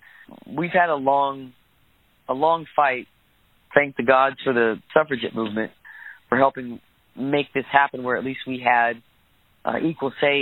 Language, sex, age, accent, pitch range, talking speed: English, male, 30-49, American, 120-140 Hz, 155 wpm